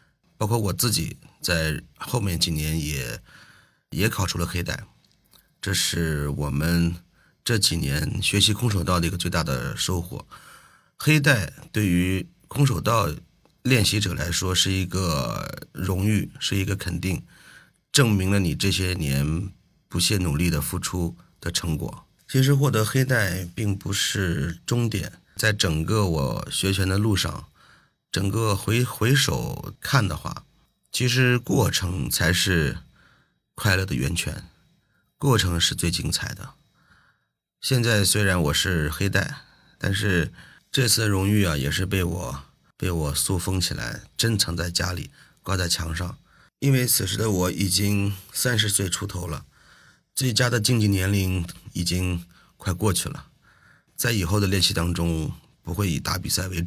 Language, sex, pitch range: Chinese, male, 85-110 Hz